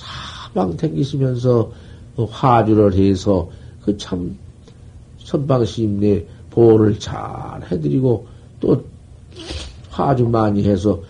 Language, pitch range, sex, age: Korean, 100-145 Hz, male, 50-69